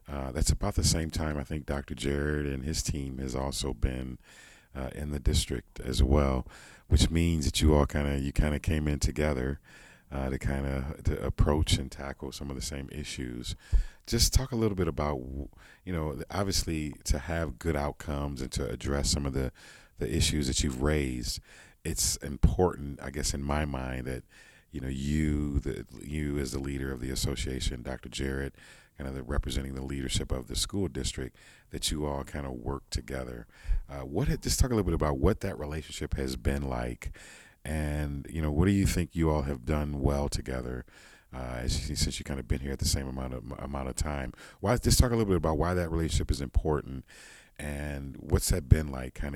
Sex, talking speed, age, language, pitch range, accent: male, 210 wpm, 40-59, English, 65-80 Hz, American